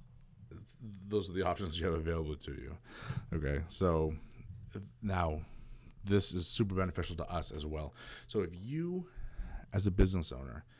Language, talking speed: English, 150 wpm